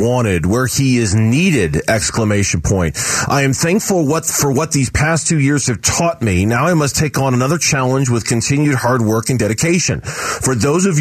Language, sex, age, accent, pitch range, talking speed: English, male, 40-59, American, 115-155 Hz, 195 wpm